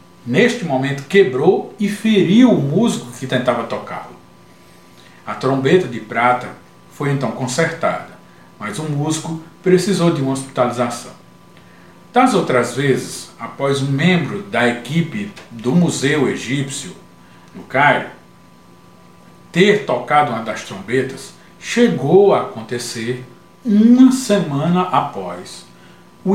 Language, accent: Portuguese, Brazilian